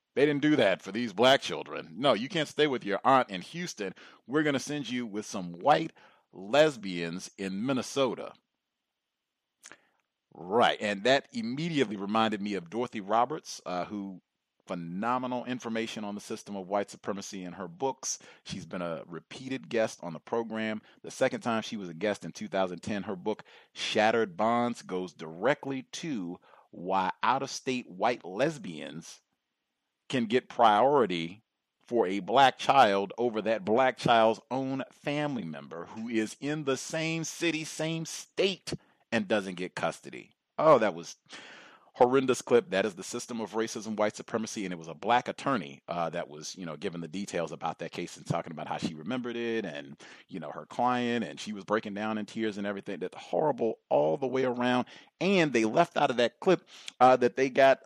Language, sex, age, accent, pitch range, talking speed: English, male, 40-59, American, 105-140 Hz, 180 wpm